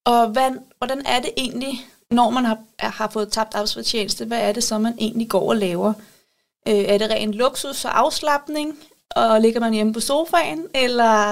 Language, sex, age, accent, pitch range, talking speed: Danish, female, 30-49, native, 210-255 Hz, 190 wpm